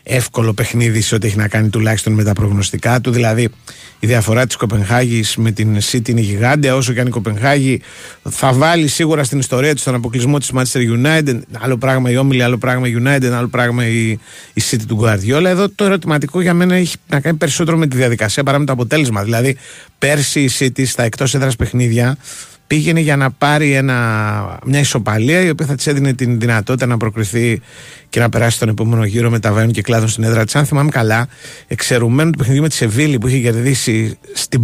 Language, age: Greek, 30-49